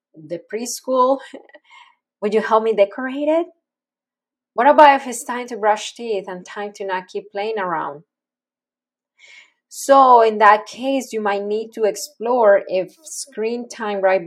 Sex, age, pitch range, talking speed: female, 20-39, 195-245 Hz, 150 wpm